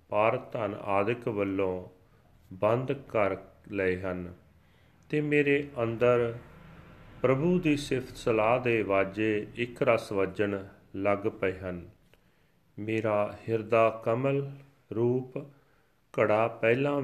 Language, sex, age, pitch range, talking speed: Punjabi, male, 40-59, 100-125 Hz, 100 wpm